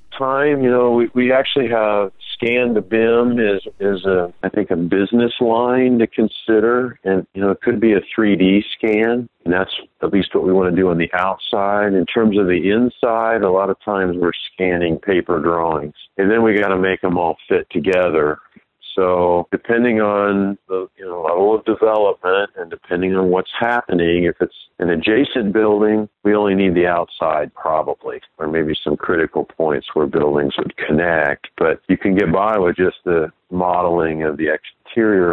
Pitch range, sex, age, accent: 85-110 Hz, male, 50-69, American